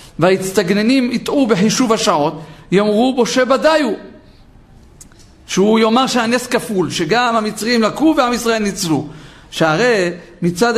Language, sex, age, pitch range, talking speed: Hebrew, male, 50-69, 175-245 Hz, 110 wpm